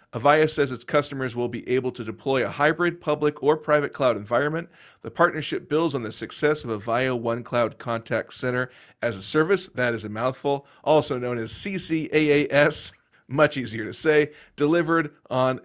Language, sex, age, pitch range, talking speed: English, male, 40-59, 115-145 Hz, 170 wpm